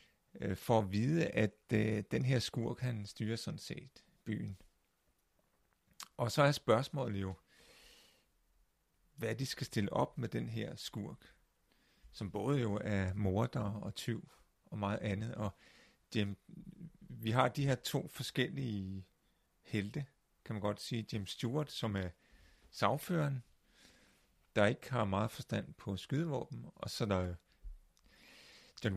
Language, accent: Danish, native